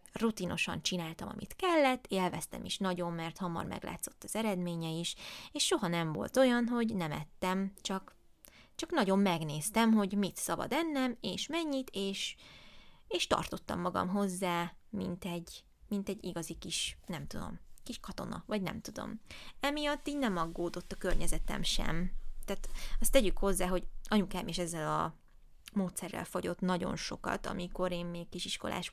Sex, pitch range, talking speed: female, 175-215 Hz, 150 wpm